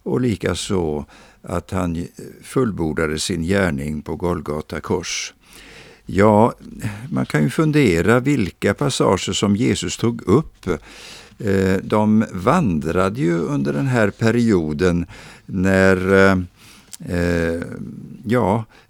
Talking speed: 95 wpm